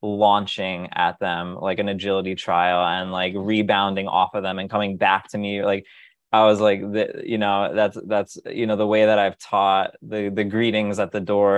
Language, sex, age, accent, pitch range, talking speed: English, male, 20-39, American, 95-110 Hz, 205 wpm